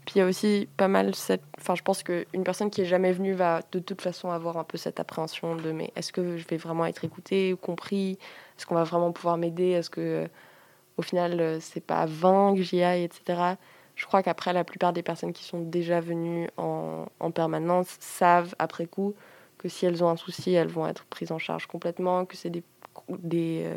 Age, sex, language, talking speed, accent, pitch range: 20-39, female, French, 220 wpm, French, 165-190 Hz